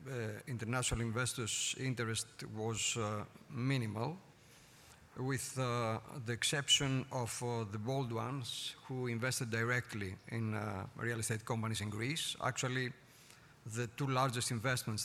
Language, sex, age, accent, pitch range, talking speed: English, male, 50-69, Spanish, 110-130 Hz, 125 wpm